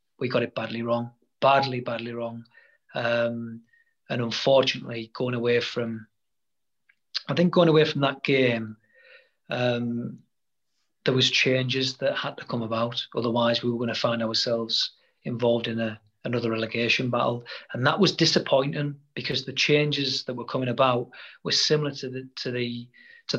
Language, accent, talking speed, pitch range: English, British, 155 wpm, 120-135 Hz